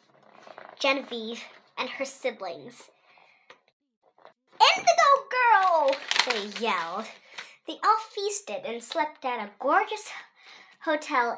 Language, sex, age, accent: Chinese, male, 10-29, American